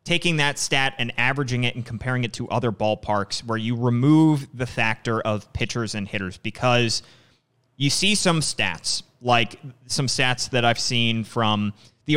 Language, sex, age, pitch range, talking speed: English, male, 30-49, 120-150 Hz, 170 wpm